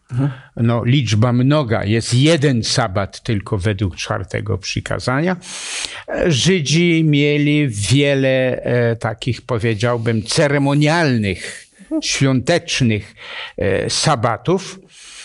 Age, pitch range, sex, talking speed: 60-79, 115-150 Hz, male, 65 wpm